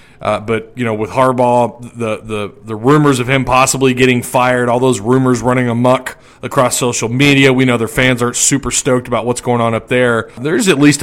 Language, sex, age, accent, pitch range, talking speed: English, male, 40-59, American, 120-145 Hz, 210 wpm